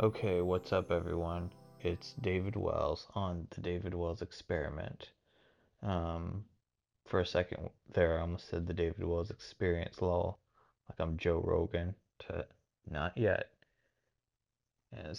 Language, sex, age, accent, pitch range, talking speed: English, male, 20-39, American, 85-110 Hz, 130 wpm